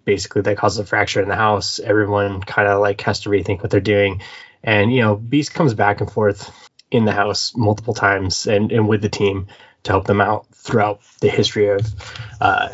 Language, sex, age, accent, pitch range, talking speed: English, male, 20-39, American, 100-110 Hz, 205 wpm